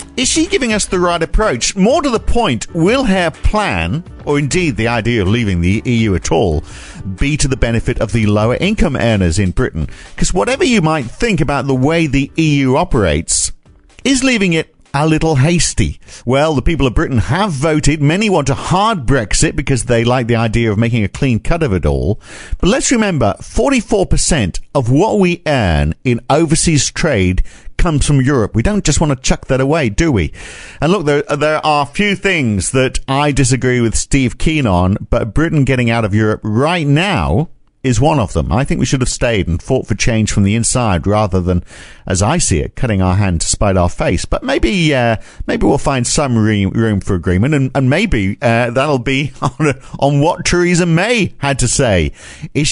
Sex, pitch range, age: male, 105-155 Hz, 50-69